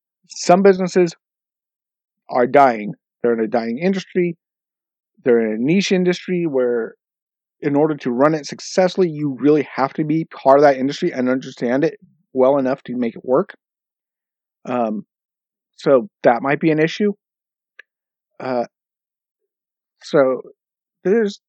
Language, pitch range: English, 130-175 Hz